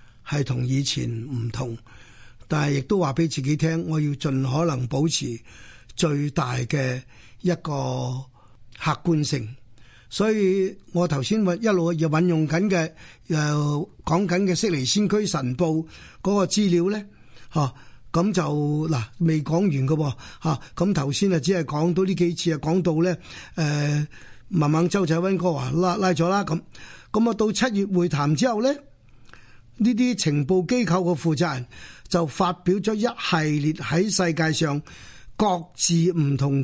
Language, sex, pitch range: Chinese, male, 140-185 Hz